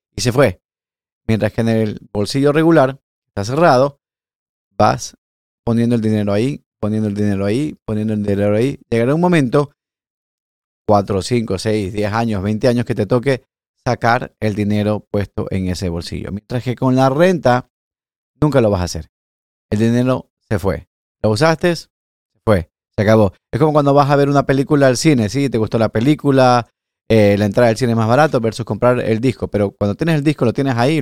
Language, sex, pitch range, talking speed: Spanish, male, 105-130 Hz, 190 wpm